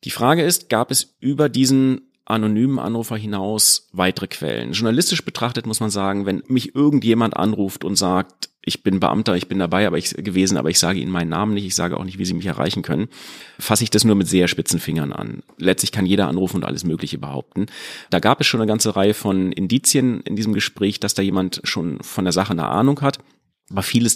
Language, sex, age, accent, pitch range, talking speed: German, male, 30-49, German, 90-115 Hz, 215 wpm